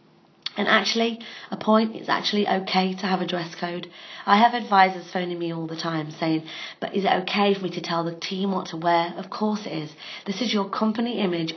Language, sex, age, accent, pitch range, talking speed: English, female, 30-49, British, 170-205 Hz, 225 wpm